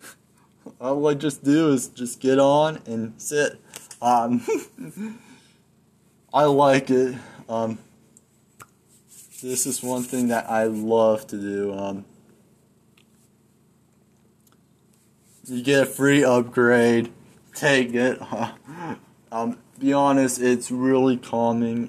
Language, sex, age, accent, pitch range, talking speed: English, male, 20-39, American, 110-130 Hz, 105 wpm